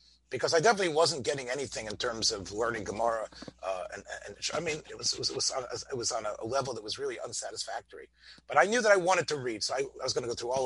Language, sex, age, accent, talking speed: English, male, 30-49, American, 280 wpm